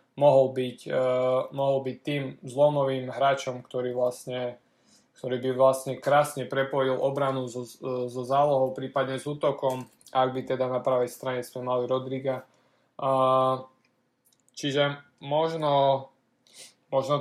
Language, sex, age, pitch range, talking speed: Slovak, male, 20-39, 125-135 Hz, 120 wpm